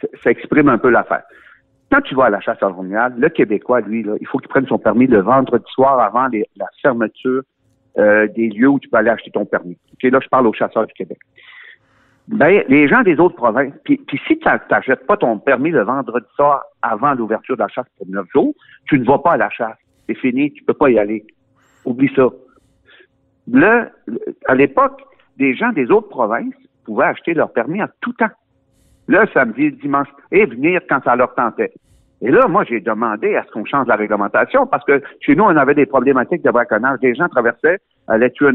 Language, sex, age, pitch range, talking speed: French, male, 60-79, 120-160 Hz, 225 wpm